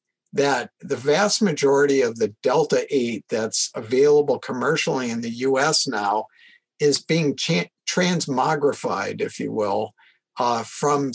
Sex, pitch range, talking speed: male, 125-170 Hz, 120 wpm